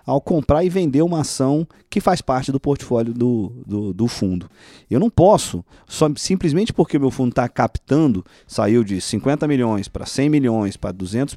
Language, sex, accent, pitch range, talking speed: Portuguese, male, Brazilian, 115-180 Hz, 185 wpm